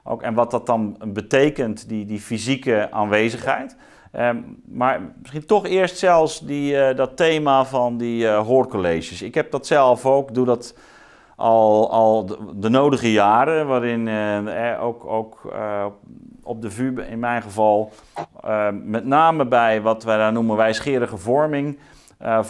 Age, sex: 40-59, male